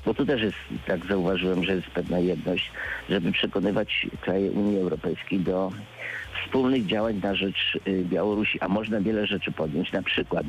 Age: 50-69